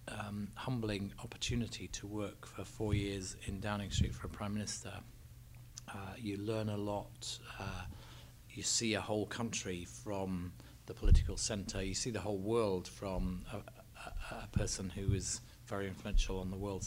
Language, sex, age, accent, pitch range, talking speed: English, male, 30-49, British, 100-115 Hz, 165 wpm